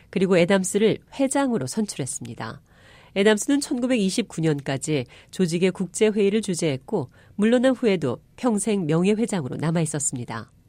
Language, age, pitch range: Korean, 40-59, 150-215 Hz